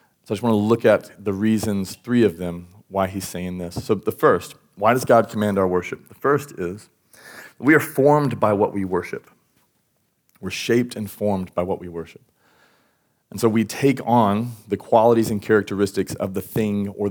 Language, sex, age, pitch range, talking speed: English, male, 30-49, 100-120 Hz, 195 wpm